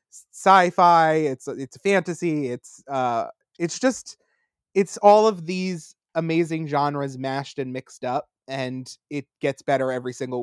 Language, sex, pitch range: English, male, 130-160 Hz